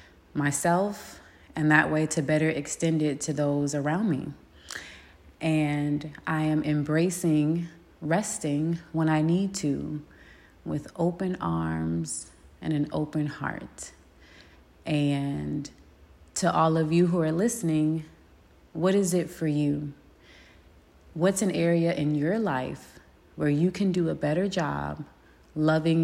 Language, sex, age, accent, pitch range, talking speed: English, female, 30-49, American, 135-165 Hz, 125 wpm